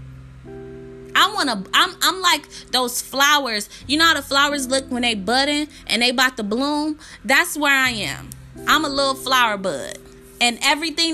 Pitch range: 200-275 Hz